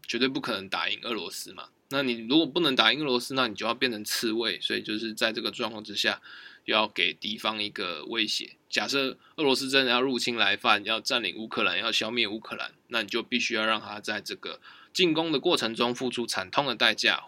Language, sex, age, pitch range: Chinese, male, 20-39, 115-135 Hz